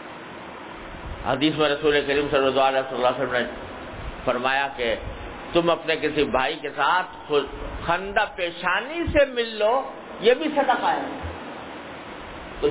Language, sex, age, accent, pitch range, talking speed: English, male, 50-69, Indian, 140-210 Hz, 95 wpm